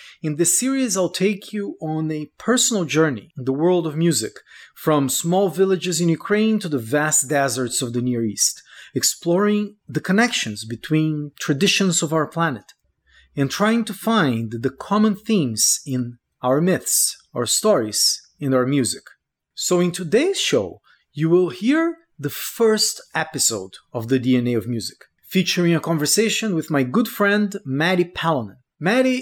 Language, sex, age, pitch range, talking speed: English, male, 30-49, 140-200 Hz, 155 wpm